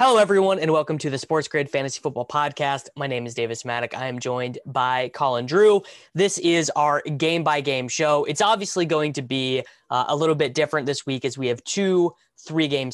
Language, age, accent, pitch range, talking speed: English, 20-39, American, 125-150 Hz, 205 wpm